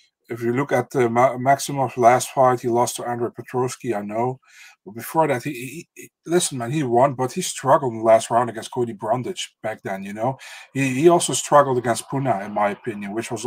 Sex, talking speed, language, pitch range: male, 230 wpm, English, 115-135 Hz